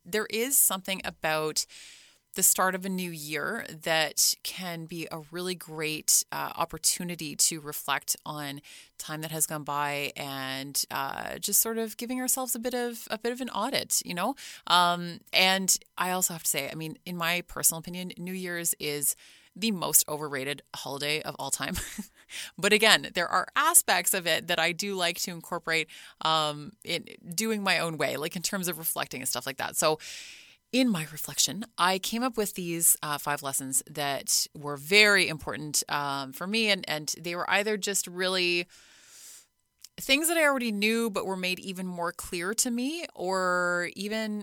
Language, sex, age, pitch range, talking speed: English, female, 20-39, 155-200 Hz, 180 wpm